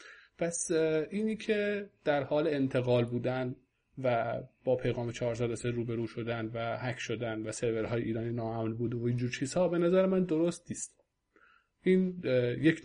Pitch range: 125-170 Hz